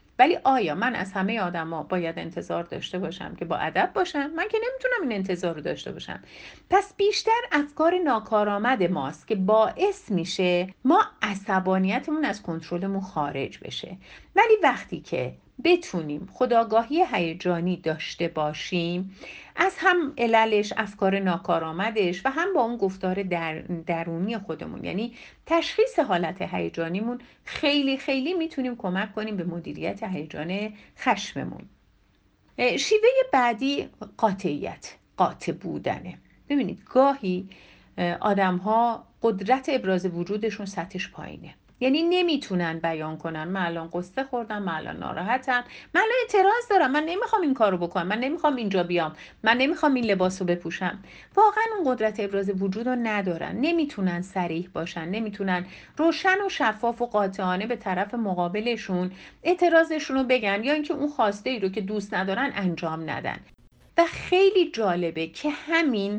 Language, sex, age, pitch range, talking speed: Persian, female, 50-69, 180-285 Hz, 135 wpm